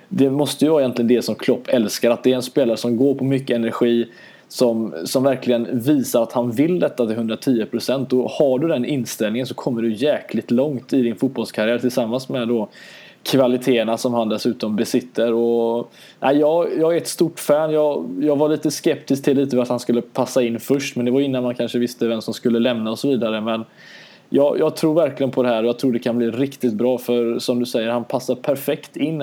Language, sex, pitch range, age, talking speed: Swedish, male, 120-140 Hz, 20-39, 220 wpm